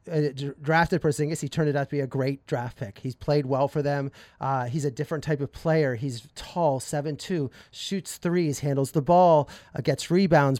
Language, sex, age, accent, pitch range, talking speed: English, male, 30-49, American, 140-165 Hz, 200 wpm